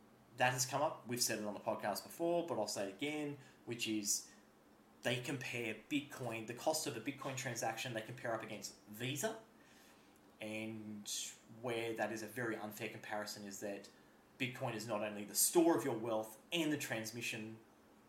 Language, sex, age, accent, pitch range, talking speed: English, male, 30-49, Australian, 110-140 Hz, 180 wpm